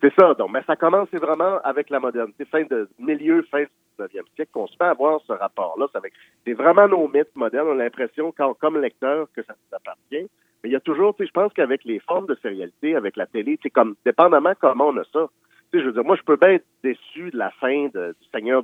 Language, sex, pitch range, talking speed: French, male, 130-195 Hz, 260 wpm